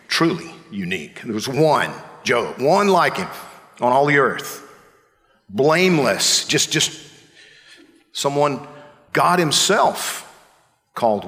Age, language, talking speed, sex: 50-69, English, 105 wpm, male